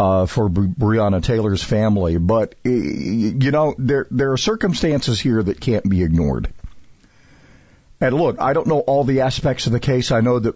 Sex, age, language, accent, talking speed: male, 50-69, English, American, 175 wpm